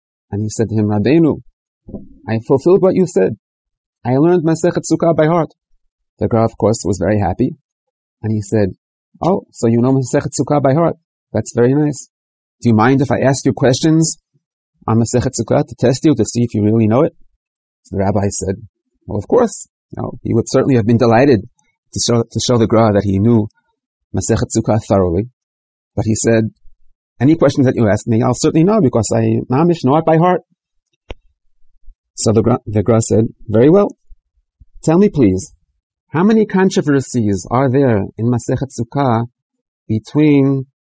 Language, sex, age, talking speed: English, male, 30-49, 175 wpm